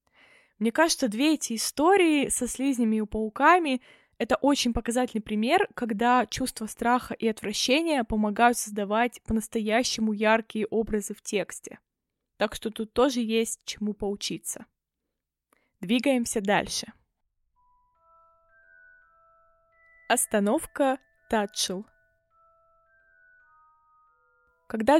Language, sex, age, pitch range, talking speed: Russian, female, 20-39, 215-275 Hz, 90 wpm